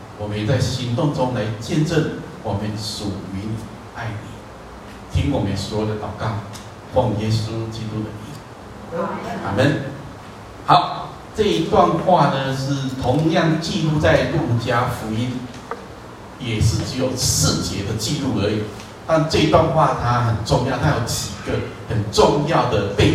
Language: Chinese